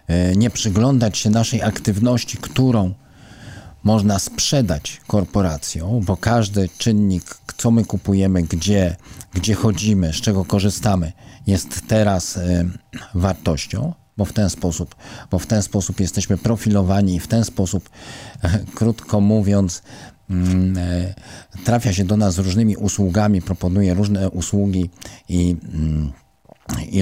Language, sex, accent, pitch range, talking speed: Polish, male, native, 90-115 Hz, 115 wpm